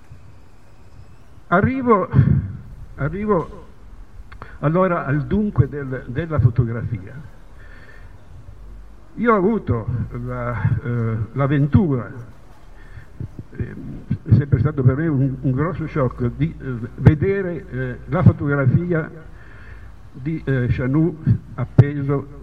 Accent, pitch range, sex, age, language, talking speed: native, 115-150 Hz, male, 60-79, Italian, 85 wpm